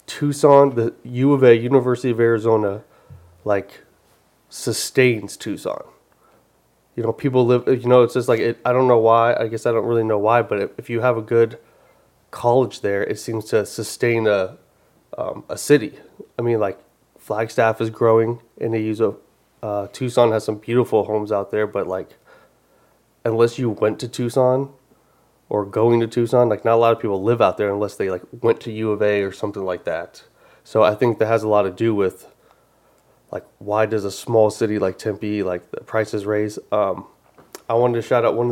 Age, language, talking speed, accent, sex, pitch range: 30-49, English, 200 wpm, American, male, 105-125 Hz